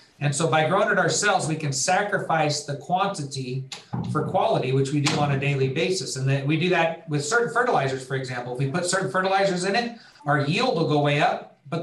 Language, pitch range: English, 140-170 Hz